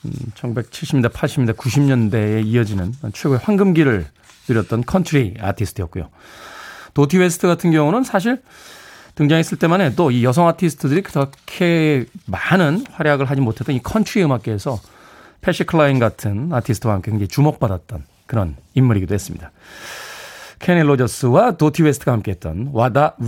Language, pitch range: Korean, 110-160 Hz